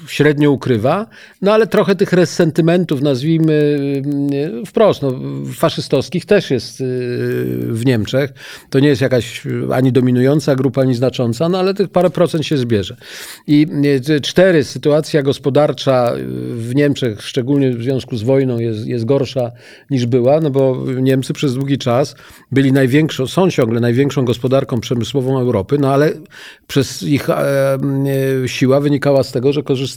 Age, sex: 50-69, male